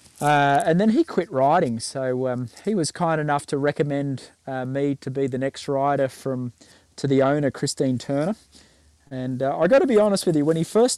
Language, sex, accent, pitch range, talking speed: English, male, Australian, 125-155 Hz, 215 wpm